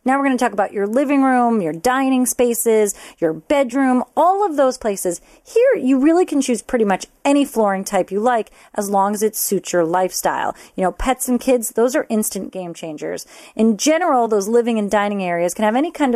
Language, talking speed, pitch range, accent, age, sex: English, 215 wpm, 195-260 Hz, American, 30-49, female